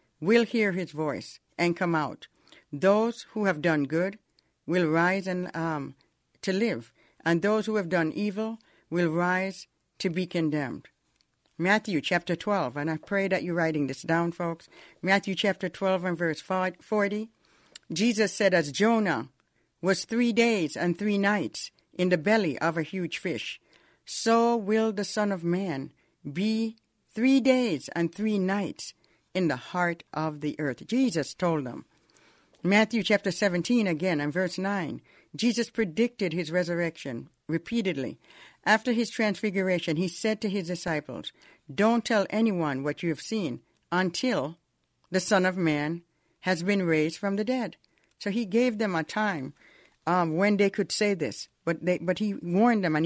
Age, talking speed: 60-79, 160 wpm